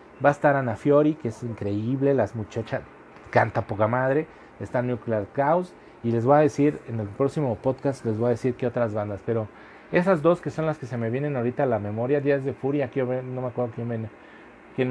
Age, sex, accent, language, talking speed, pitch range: 40-59, male, Mexican, Spanish, 220 wpm, 115-140 Hz